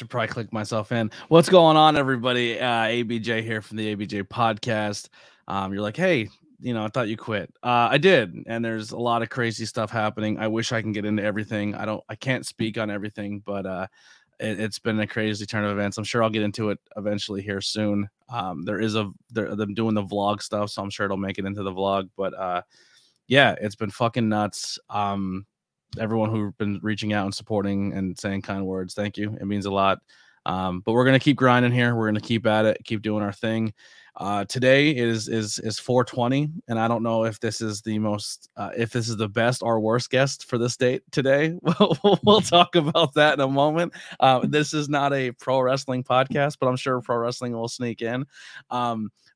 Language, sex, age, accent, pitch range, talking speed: English, male, 20-39, American, 105-125 Hz, 220 wpm